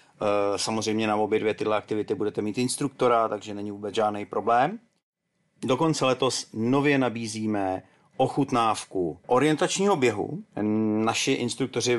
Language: Czech